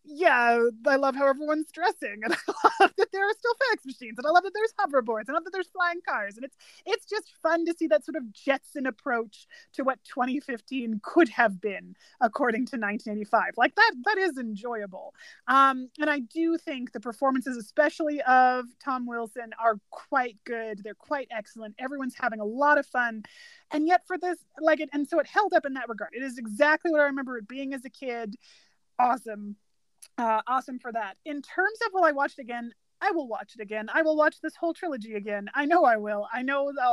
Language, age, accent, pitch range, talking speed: English, 30-49, American, 230-310 Hz, 215 wpm